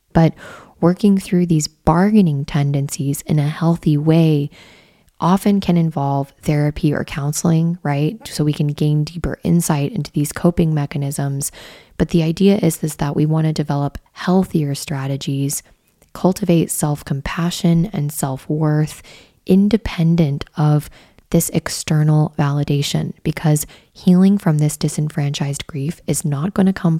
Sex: female